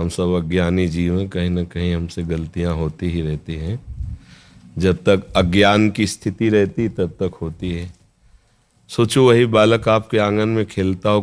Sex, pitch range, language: male, 90-105 Hz, Hindi